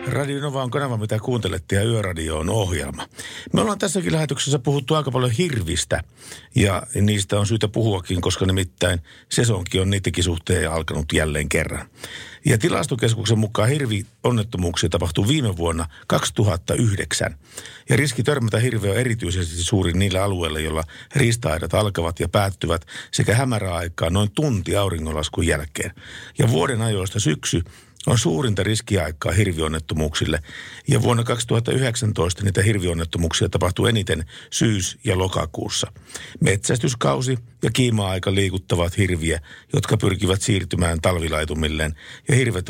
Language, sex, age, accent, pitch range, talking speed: Finnish, male, 50-69, native, 90-120 Hz, 125 wpm